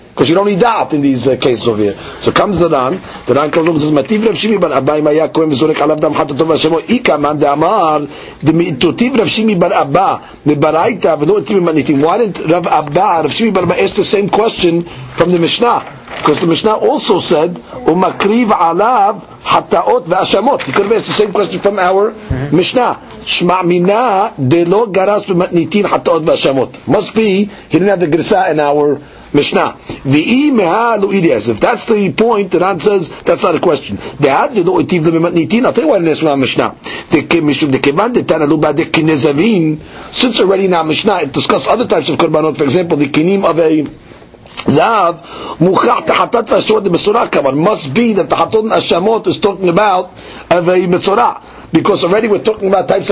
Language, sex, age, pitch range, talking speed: English, male, 50-69, 155-205 Hz, 125 wpm